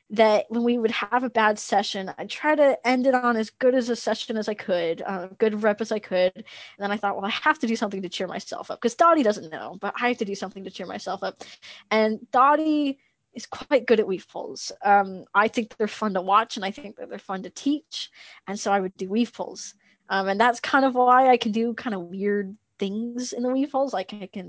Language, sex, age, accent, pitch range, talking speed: English, female, 20-39, American, 195-245 Hz, 260 wpm